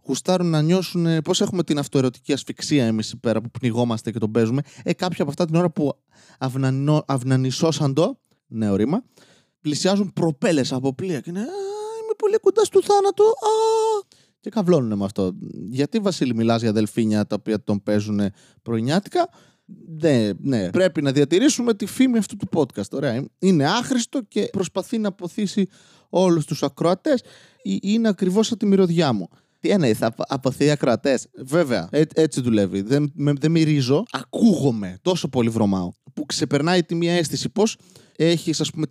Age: 20-39